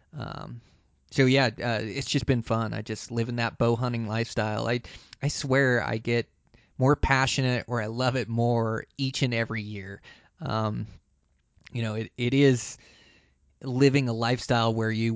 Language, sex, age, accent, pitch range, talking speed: English, male, 20-39, American, 110-130 Hz, 170 wpm